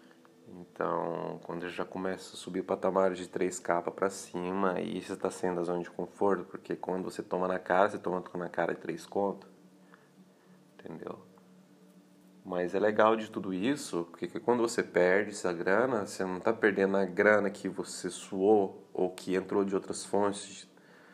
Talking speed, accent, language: 180 wpm, Brazilian, Portuguese